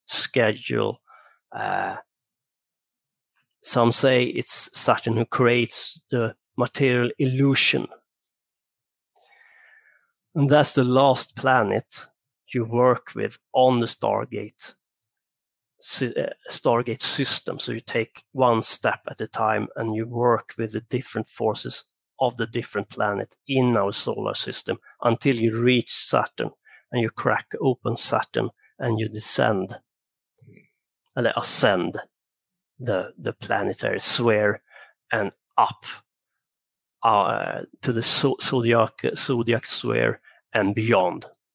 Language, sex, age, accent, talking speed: English, male, 30-49, Swedish, 110 wpm